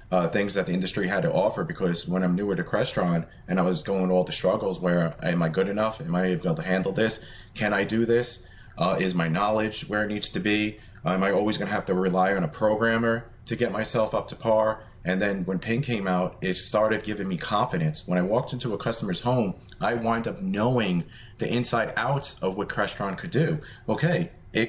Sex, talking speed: male, 230 wpm